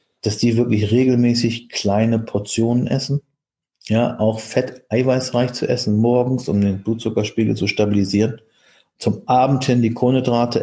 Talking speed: 130 wpm